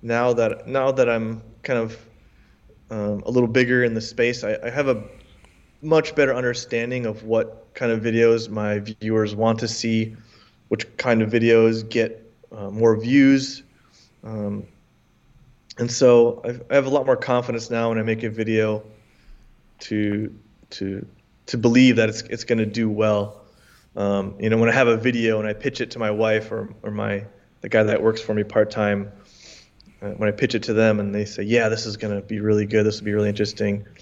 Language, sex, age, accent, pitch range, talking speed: English, male, 20-39, American, 110-125 Hz, 195 wpm